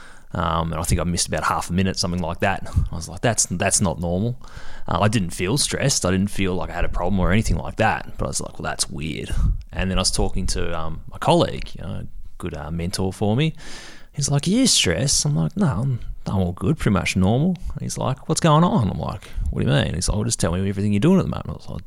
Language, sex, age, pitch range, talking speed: English, male, 30-49, 85-110 Hz, 280 wpm